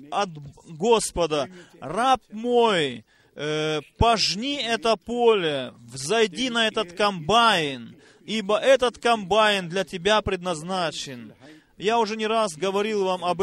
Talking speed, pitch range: 105 wpm, 180-220 Hz